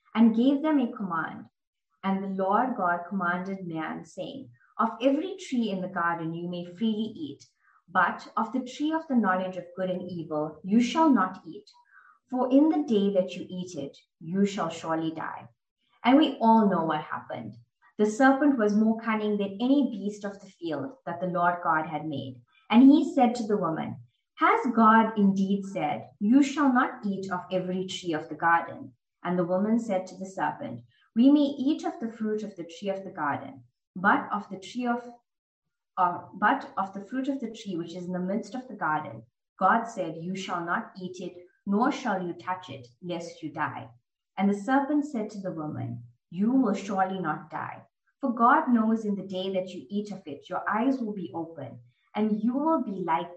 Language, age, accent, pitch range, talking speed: English, 20-39, Indian, 170-230 Hz, 200 wpm